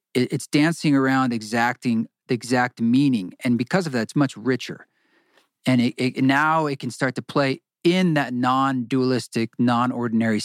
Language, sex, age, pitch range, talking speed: English, male, 40-59, 125-155 Hz, 155 wpm